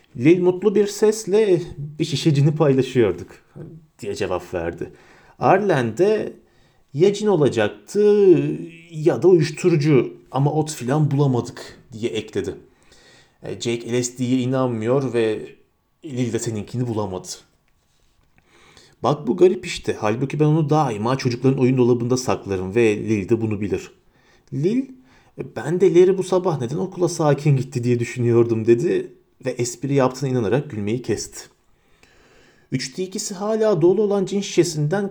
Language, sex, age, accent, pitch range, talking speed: Turkish, male, 40-59, native, 125-185 Hz, 130 wpm